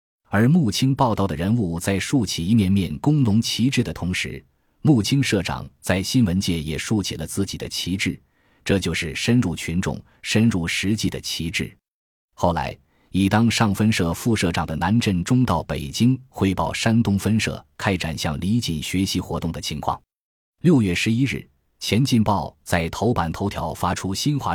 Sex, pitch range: male, 85-115 Hz